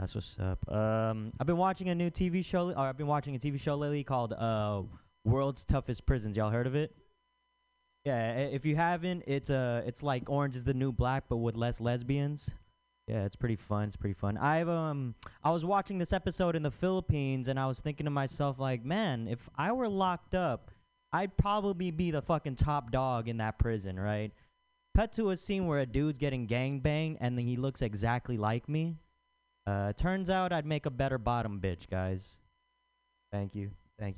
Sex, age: male, 20-39